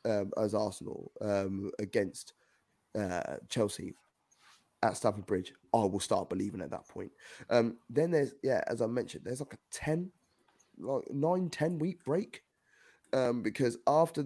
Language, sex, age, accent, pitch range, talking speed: English, male, 20-39, British, 100-130 Hz, 155 wpm